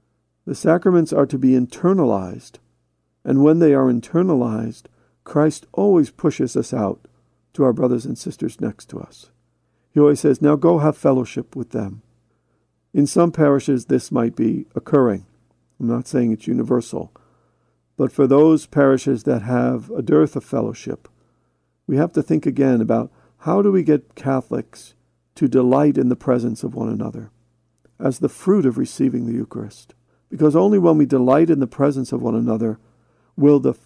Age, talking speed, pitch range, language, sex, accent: 50-69, 165 wpm, 115-150 Hz, English, male, American